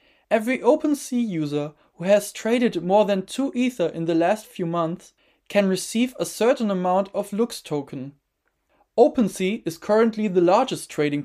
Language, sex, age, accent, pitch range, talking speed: English, male, 20-39, German, 165-220 Hz, 155 wpm